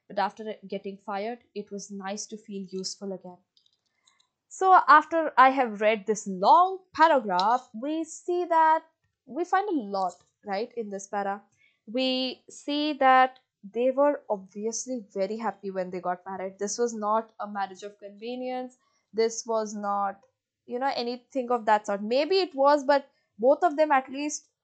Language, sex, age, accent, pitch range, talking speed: English, female, 20-39, Indian, 210-280 Hz, 165 wpm